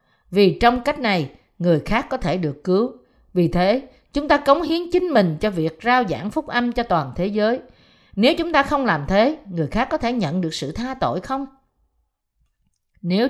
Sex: female